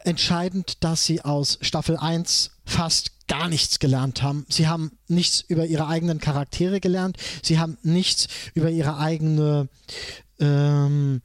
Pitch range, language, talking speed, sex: 145-185 Hz, German, 140 wpm, male